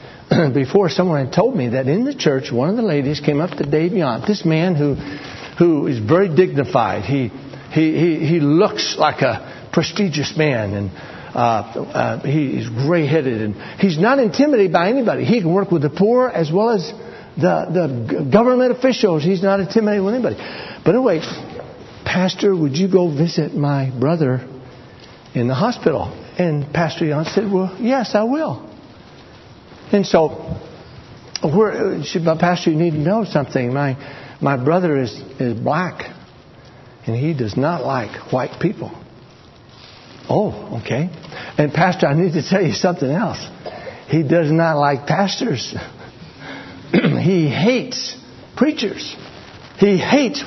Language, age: English, 60-79